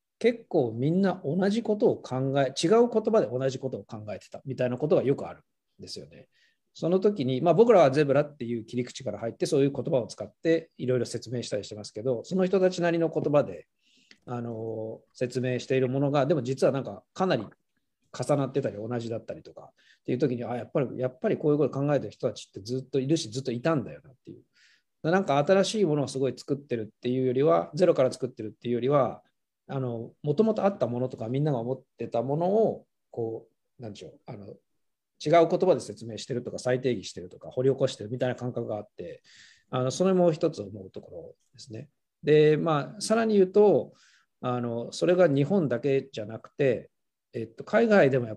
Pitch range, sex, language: 120-165 Hz, male, Japanese